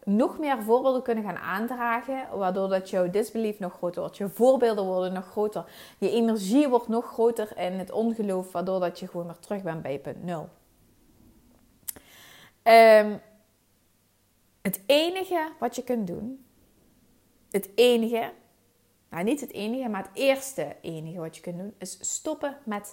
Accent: Dutch